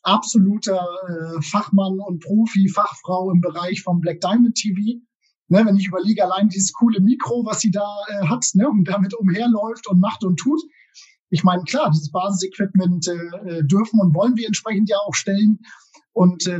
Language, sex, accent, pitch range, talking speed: German, male, German, 155-195 Hz, 175 wpm